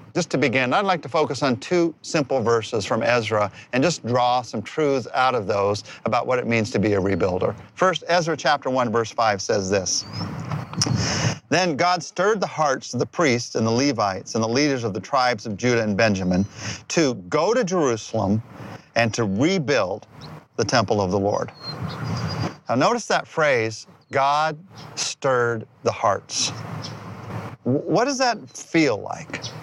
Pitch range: 115-155 Hz